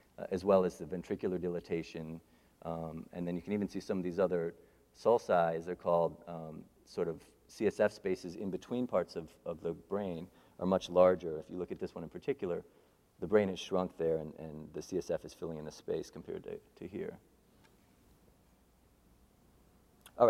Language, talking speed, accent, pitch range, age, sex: English, 190 wpm, American, 85-105 Hz, 40-59, male